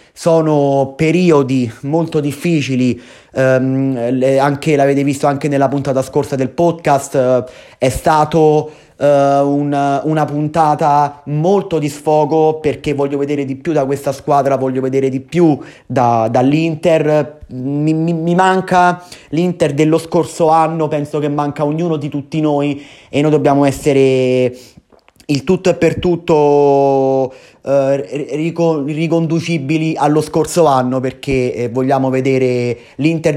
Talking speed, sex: 130 wpm, male